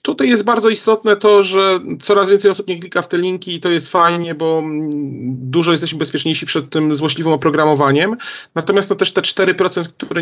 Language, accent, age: Polish, native, 40-59